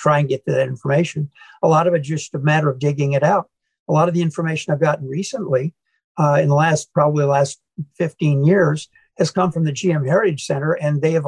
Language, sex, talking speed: English, male, 230 wpm